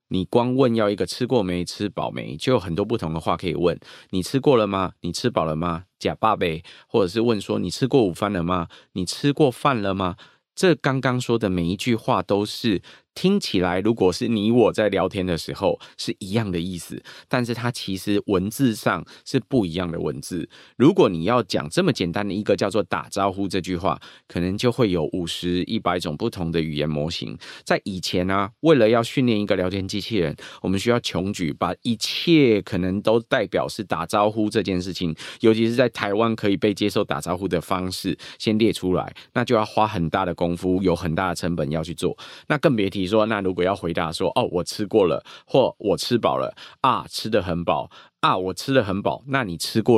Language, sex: Chinese, male